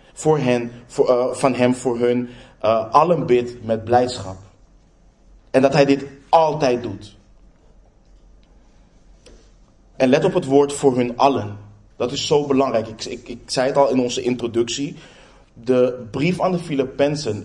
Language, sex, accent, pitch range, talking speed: Dutch, male, Dutch, 115-140 Hz, 155 wpm